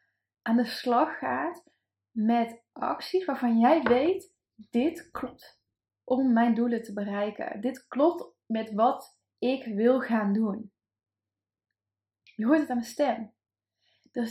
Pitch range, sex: 220-280 Hz, female